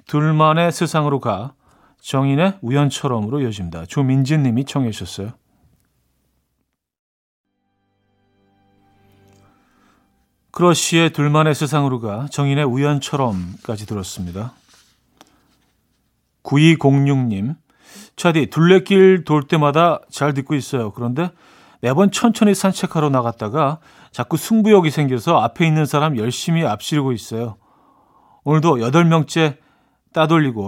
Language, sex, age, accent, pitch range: Korean, male, 40-59, native, 115-165 Hz